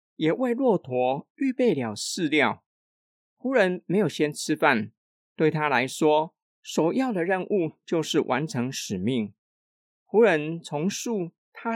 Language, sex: Chinese, male